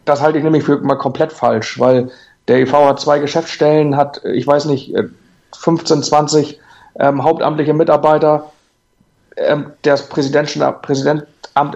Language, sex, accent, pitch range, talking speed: German, male, German, 135-150 Hz, 130 wpm